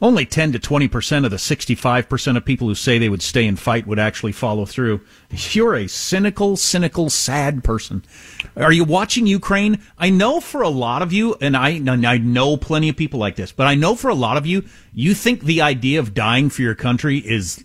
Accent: American